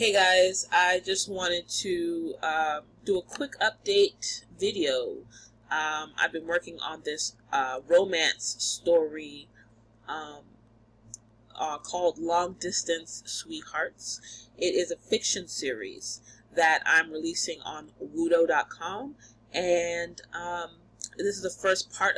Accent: American